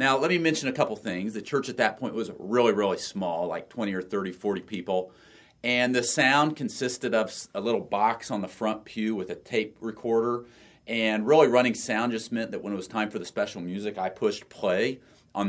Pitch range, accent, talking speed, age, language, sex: 110-150 Hz, American, 220 wpm, 40-59, English, male